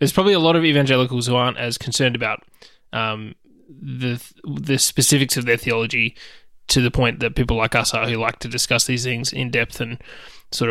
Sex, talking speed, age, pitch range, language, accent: male, 205 wpm, 20-39, 120-135 Hz, English, Australian